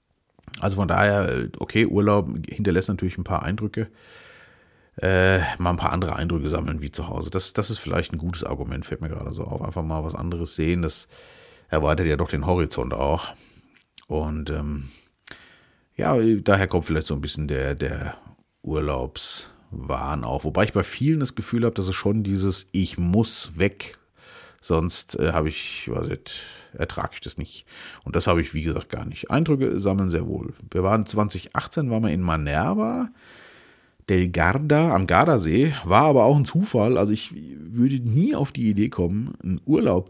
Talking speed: 175 wpm